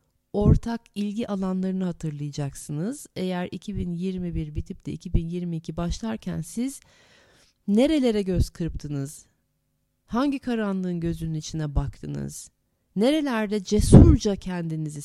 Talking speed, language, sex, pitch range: 90 wpm, Turkish, female, 165-215 Hz